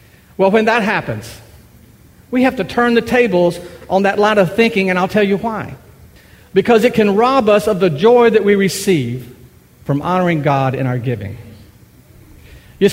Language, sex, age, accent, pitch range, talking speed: English, male, 50-69, American, 145-225 Hz, 175 wpm